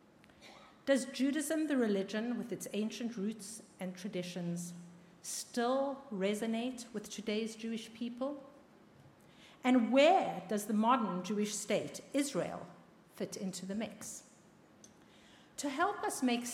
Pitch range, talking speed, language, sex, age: 195-255 Hz, 115 wpm, English, female, 50-69